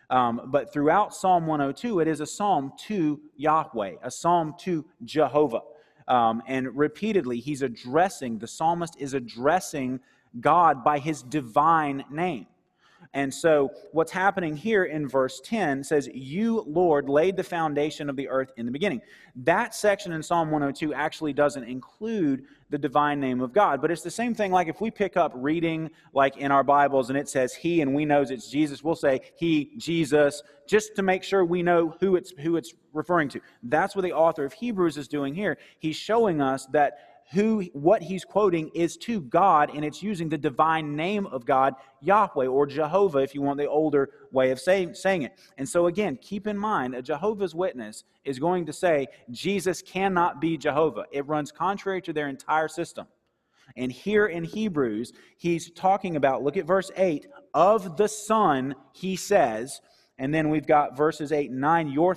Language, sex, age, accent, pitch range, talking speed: English, male, 30-49, American, 140-185 Hz, 185 wpm